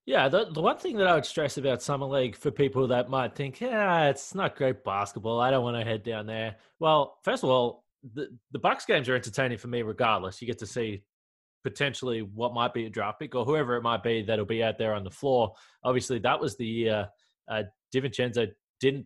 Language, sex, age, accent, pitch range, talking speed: English, male, 20-39, Australian, 115-140 Hz, 225 wpm